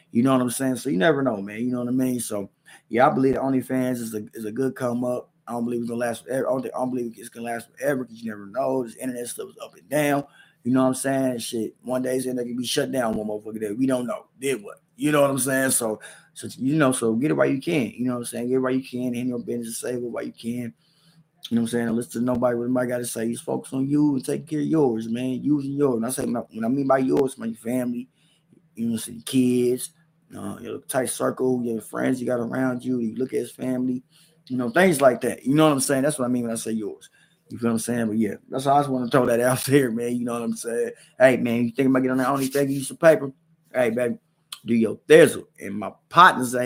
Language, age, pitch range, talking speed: English, 20-39, 120-140 Hz, 295 wpm